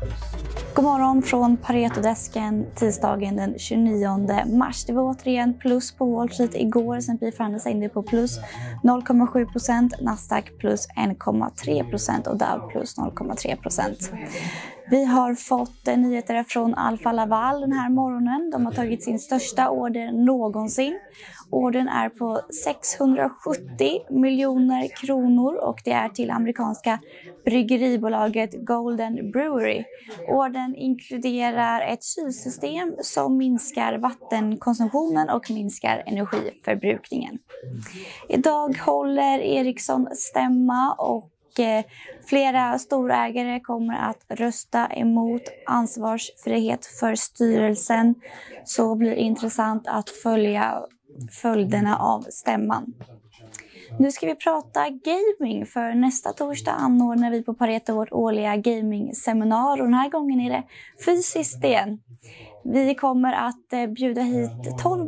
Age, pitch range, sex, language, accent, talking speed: 20-39, 220-255 Hz, female, Swedish, native, 115 wpm